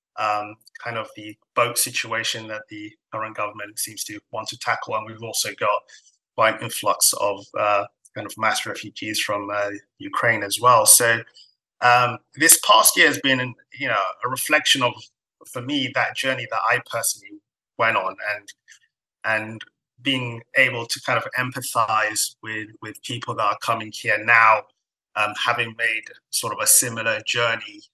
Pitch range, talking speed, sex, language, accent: 110-125 Hz, 170 wpm, male, English, British